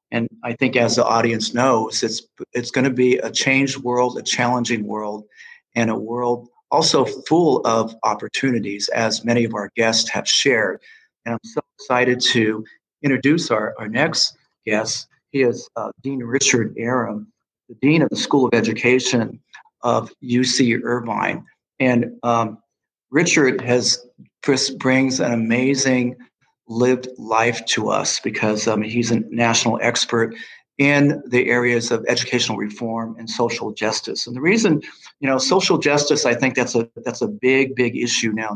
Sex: male